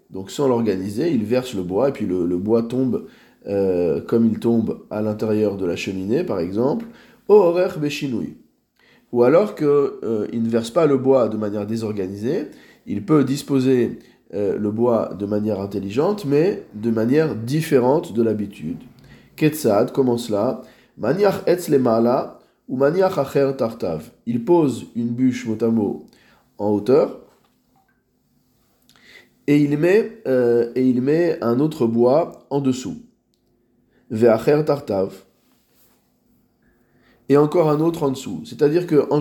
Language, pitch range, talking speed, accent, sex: French, 115-155 Hz, 140 wpm, French, male